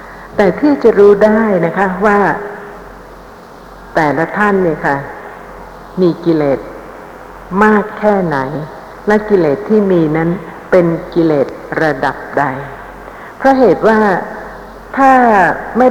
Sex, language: female, Thai